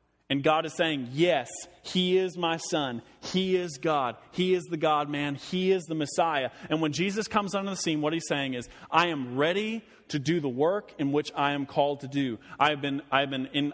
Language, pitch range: English, 140-180 Hz